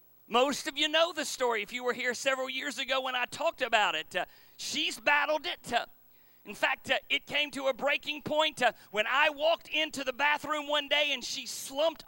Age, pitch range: 40-59, 190-295 Hz